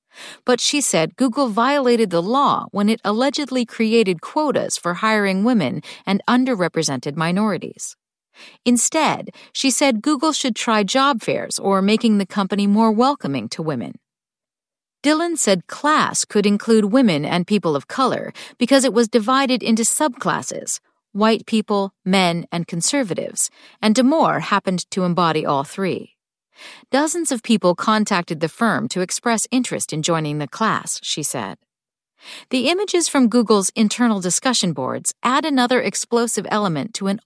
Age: 40-59